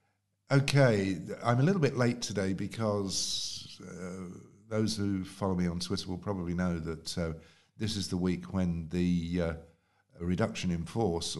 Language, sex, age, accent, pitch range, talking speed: English, male, 50-69, British, 85-105 Hz, 160 wpm